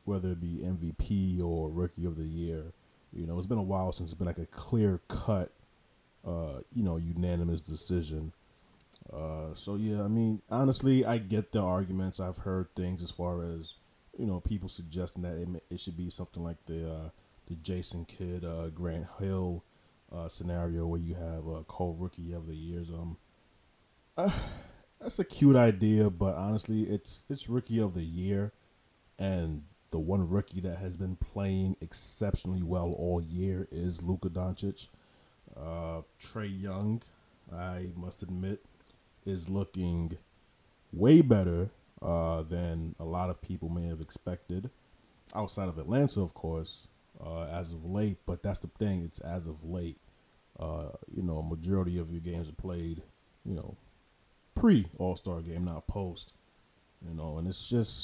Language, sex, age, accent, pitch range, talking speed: English, male, 30-49, American, 85-95 Hz, 165 wpm